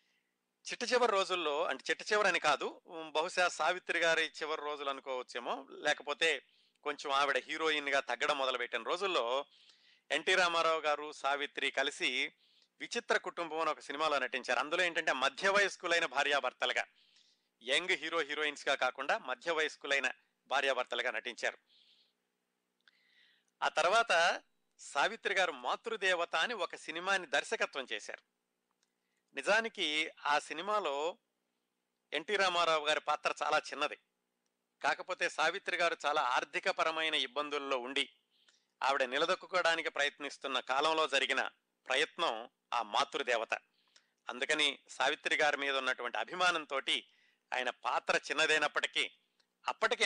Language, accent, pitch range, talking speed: Telugu, native, 125-170 Hz, 105 wpm